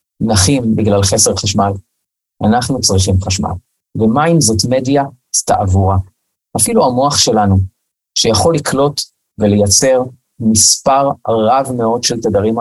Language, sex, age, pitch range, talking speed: Hebrew, male, 30-49, 105-140 Hz, 110 wpm